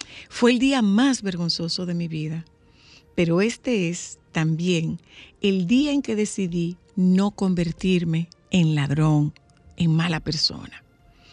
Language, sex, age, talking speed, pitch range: Spanish, female, 50-69, 125 wpm, 165-210 Hz